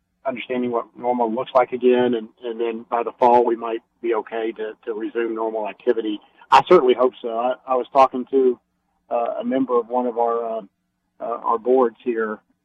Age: 50-69